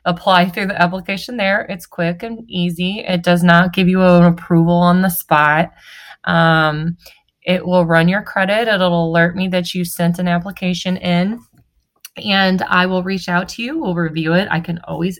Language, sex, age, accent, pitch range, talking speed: English, female, 20-39, American, 170-195 Hz, 185 wpm